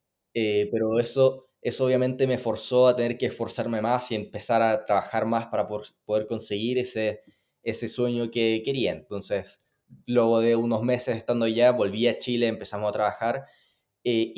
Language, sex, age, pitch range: Spanish, male, 20-39, 110-125 Hz